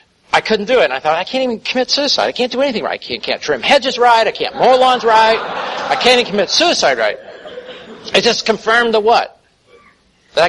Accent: American